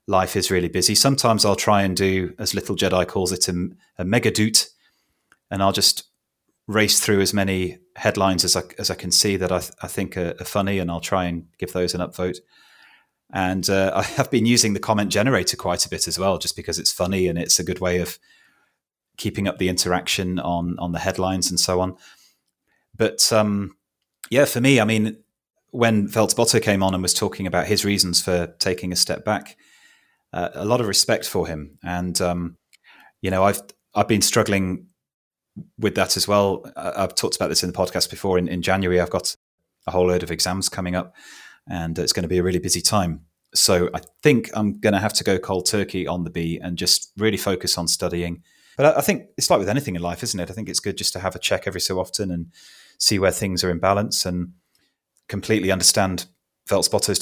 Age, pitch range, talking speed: 30-49, 90-100 Hz, 215 wpm